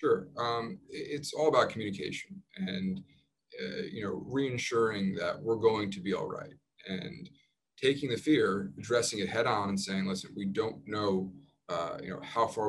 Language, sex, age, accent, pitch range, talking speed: English, male, 20-39, American, 95-125 Hz, 175 wpm